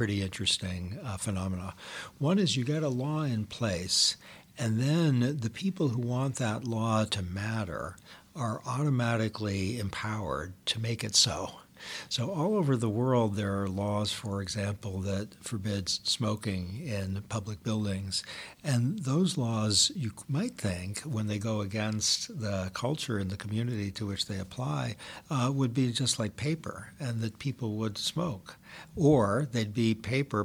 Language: English